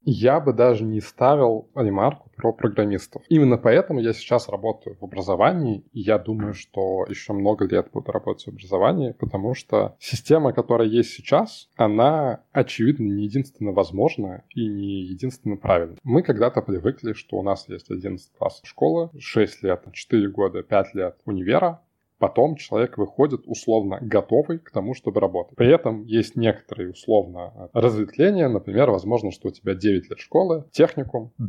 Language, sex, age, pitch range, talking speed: Russian, male, 20-39, 105-130 Hz, 155 wpm